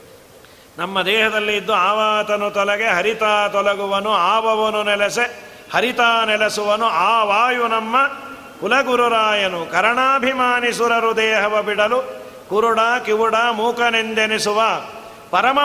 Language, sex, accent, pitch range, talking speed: Kannada, male, native, 210-240 Hz, 85 wpm